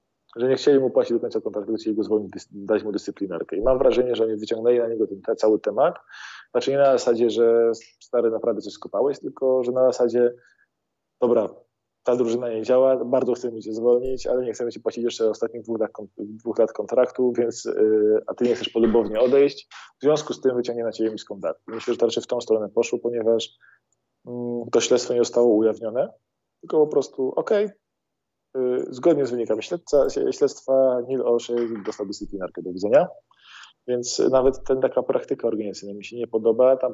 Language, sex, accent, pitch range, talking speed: Polish, male, native, 110-130 Hz, 185 wpm